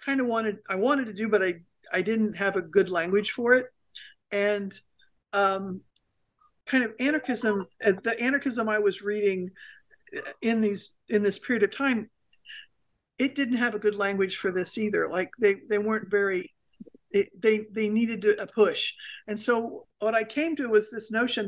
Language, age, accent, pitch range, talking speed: English, 50-69, American, 200-255 Hz, 175 wpm